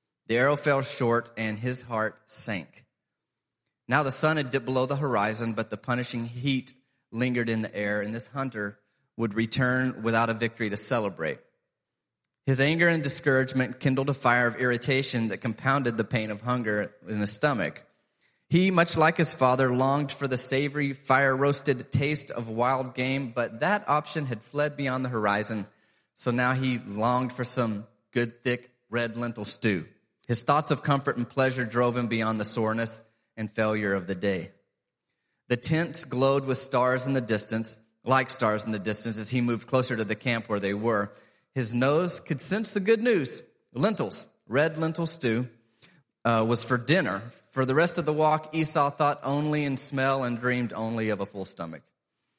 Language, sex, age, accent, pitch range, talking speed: English, male, 30-49, American, 115-140 Hz, 180 wpm